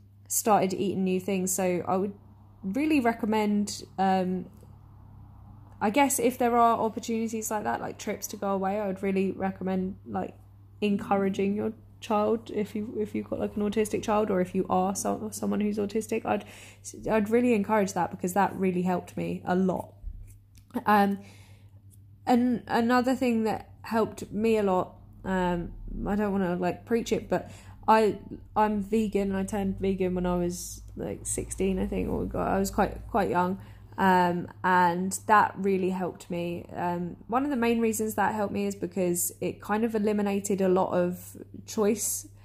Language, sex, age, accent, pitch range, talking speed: English, female, 10-29, British, 175-210 Hz, 175 wpm